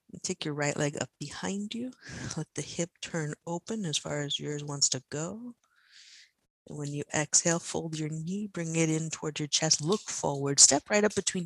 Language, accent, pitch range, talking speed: English, American, 140-180 Hz, 200 wpm